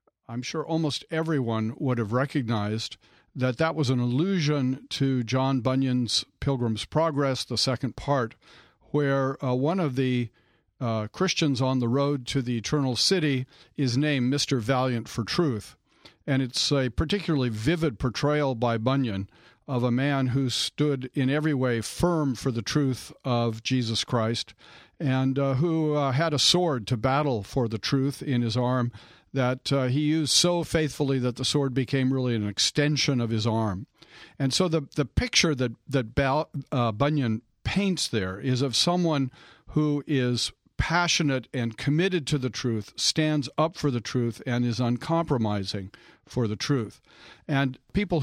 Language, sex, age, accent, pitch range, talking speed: English, male, 50-69, American, 120-150 Hz, 160 wpm